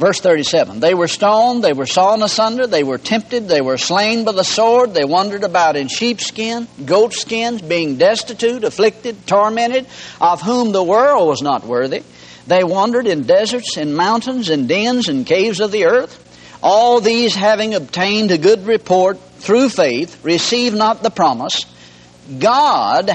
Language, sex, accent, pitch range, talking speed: English, male, American, 170-245 Hz, 160 wpm